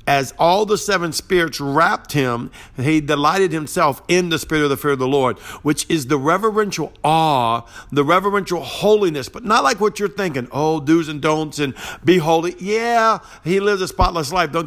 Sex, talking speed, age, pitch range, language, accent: male, 190 wpm, 50-69, 140-175 Hz, English, American